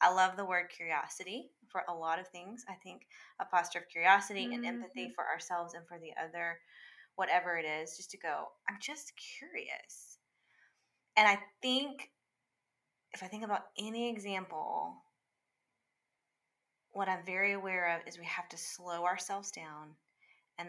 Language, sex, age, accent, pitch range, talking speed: English, female, 20-39, American, 170-215 Hz, 160 wpm